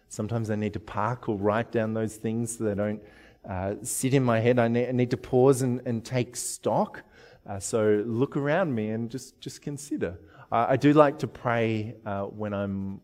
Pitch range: 105-130 Hz